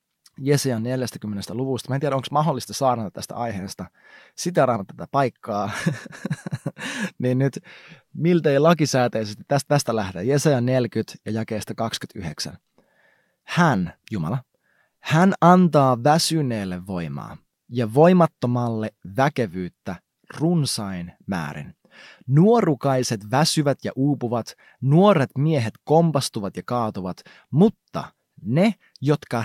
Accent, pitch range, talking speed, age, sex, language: native, 110-150 Hz, 100 wpm, 30-49, male, Finnish